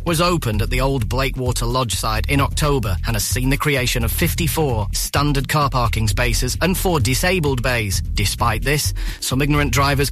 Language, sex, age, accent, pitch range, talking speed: English, male, 30-49, British, 110-140 Hz, 180 wpm